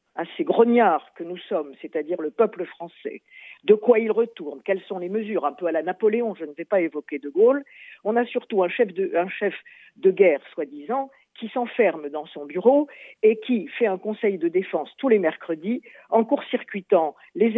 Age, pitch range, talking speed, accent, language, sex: 50-69, 175-235 Hz, 200 wpm, French, Italian, female